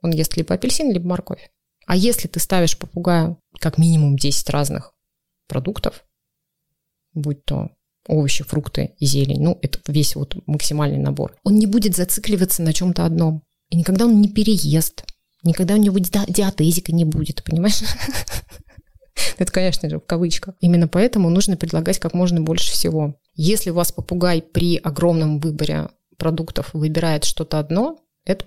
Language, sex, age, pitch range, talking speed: Russian, female, 20-39, 155-180 Hz, 150 wpm